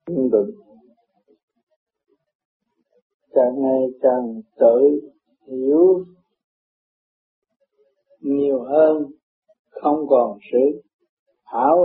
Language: Vietnamese